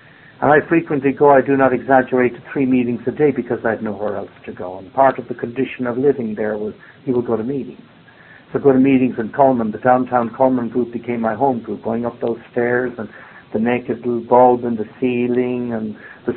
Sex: male